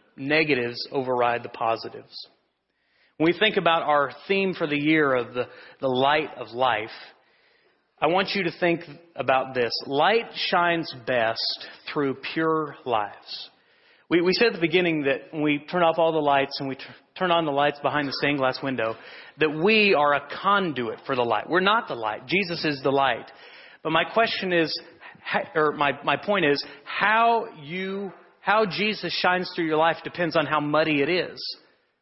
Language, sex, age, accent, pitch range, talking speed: English, male, 40-59, American, 145-195 Hz, 180 wpm